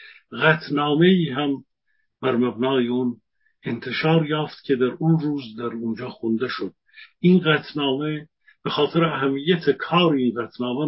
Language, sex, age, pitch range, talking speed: Persian, male, 50-69, 130-160 Hz, 120 wpm